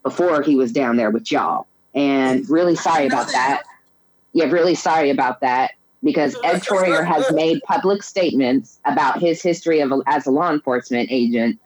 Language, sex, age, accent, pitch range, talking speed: English, female, 30-49, American, 140-175 Hz, 170 wpm